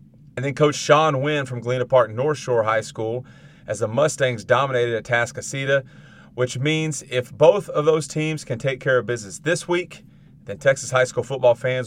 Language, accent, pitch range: English, American, 115-140 Hz